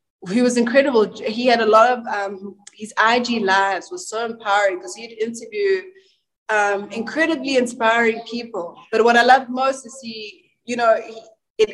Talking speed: 170 wpm